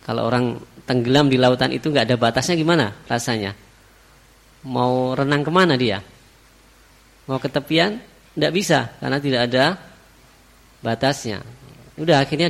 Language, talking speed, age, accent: Indonesian, 120 wpm, 20-39, native